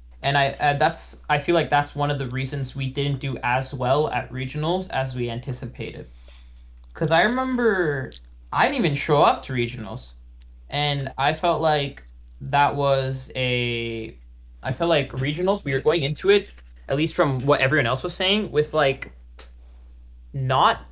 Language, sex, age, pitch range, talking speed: English, male, 10-29, 110-145 Hz, 160 wpm